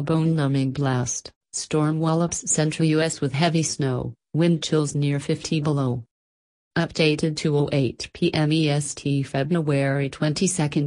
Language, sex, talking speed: English, female, 115 wpm